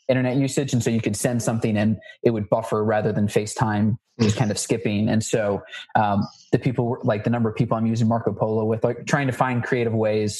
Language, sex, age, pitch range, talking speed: English, male, 20-39, 110-130 Hz, 230 wpm